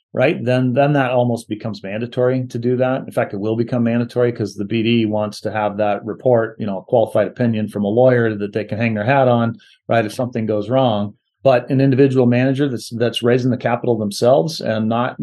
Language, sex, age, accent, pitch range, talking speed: English, male, 40-59, American, 110-125 Hz, 220 wpm